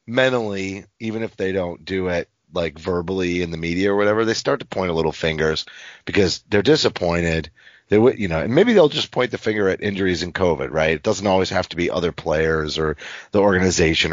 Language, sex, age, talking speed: English, male, 30-49, 215 wpm